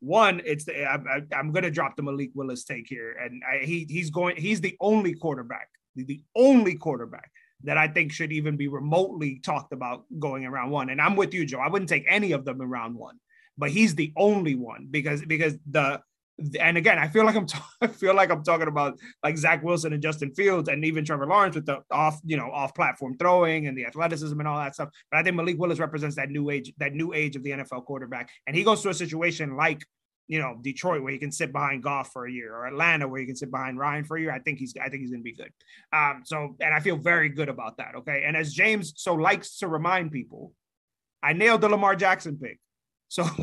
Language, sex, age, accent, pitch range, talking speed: English, male, 20-39, American, 140-175 Hz, 250 wpm